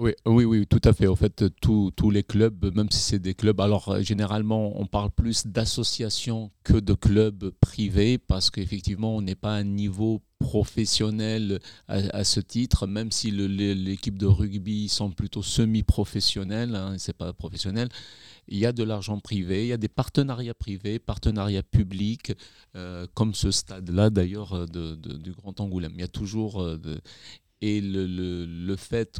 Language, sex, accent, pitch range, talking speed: French, male, French, 95-115 Hz, 175 wpm